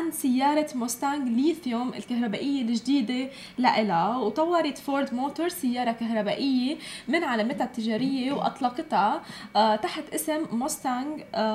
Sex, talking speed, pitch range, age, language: female, 100 wpm, 220-295 Hz, 10-29, Arabic